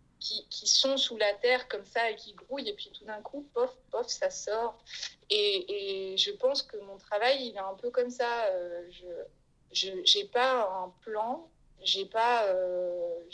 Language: French